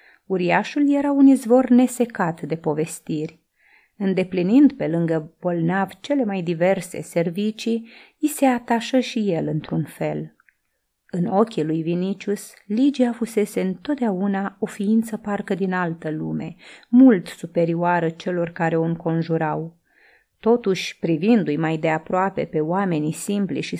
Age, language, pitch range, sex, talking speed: 30-49, Romanian, 170-230 Hz, female, 125 wpm